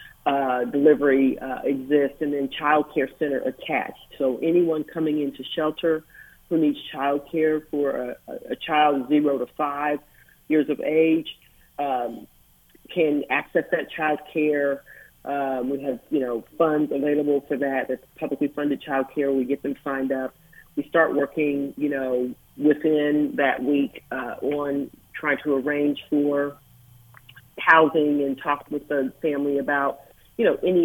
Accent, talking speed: American, 150 wpm